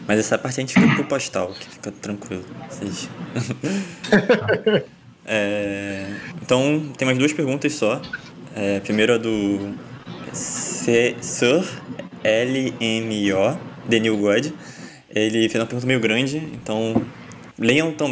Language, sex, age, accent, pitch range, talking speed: Portuguese, male, 20-39, Brazilian, 105-130 Hz, 115 wpm